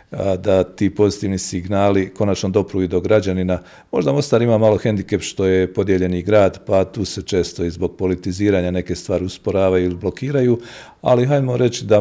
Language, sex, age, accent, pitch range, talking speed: Croatian, male, 50-69, native, 90-100 Hz, 165 wpm